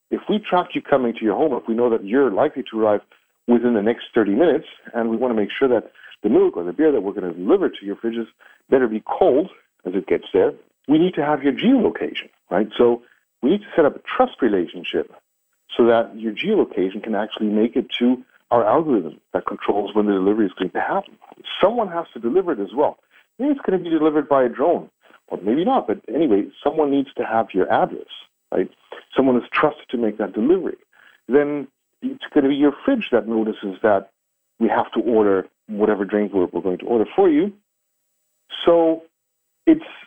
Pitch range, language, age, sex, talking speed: 110-155 Hz, English, 50-69, male, 215 wpm